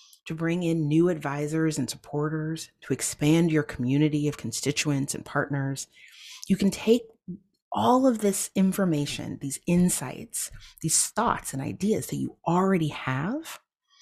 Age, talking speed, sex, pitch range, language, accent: 30-49, 135 wpm, female, 130-165 Hz, English, American